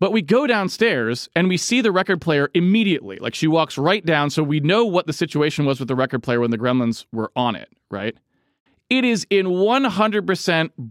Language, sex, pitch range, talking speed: English, male, 155-225 Hz, 210 wpm